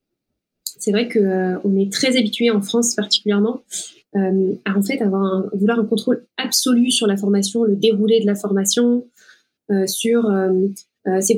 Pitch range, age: 205-245 Hz, 20-39